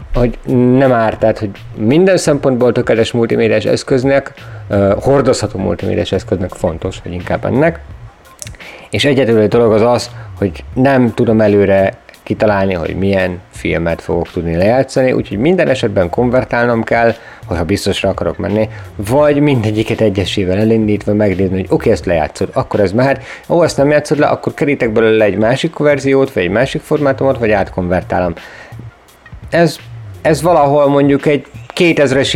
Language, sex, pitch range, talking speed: Hungarian, male, 105-130 Hz, 145 wpm